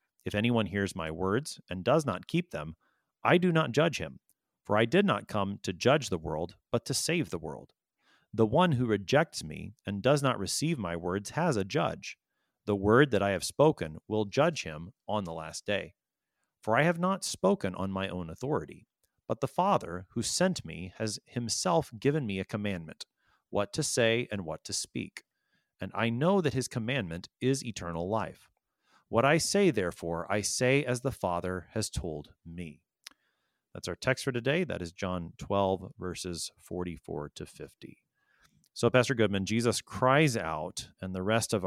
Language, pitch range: English, 90-125 Hz